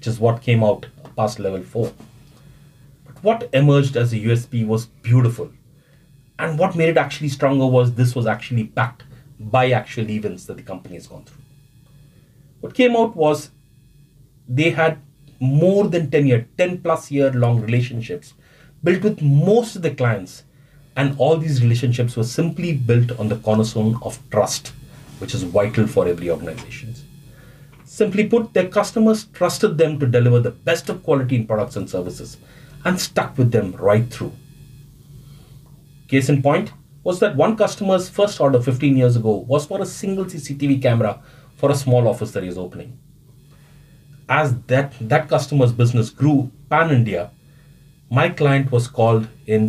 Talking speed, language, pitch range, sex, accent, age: 165 wpm, English, 120-150 Hz, male, Indian, 30-49